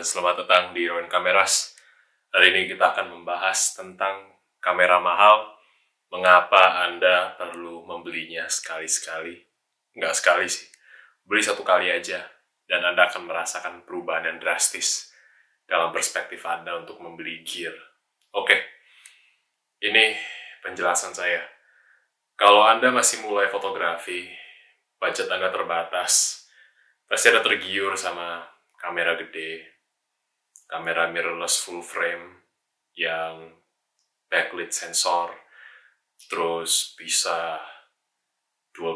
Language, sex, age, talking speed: Indonesian, male, 20-39, 105 wpm